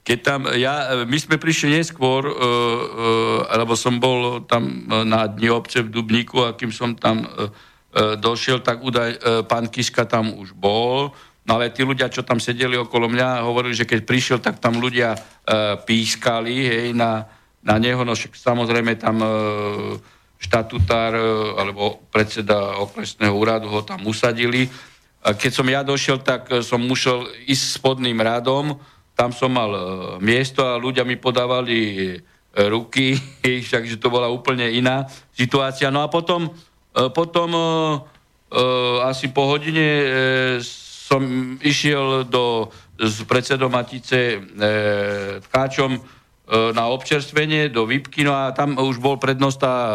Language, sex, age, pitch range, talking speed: Slovak, male, 50-69, 115-130 Hz, 145 wpm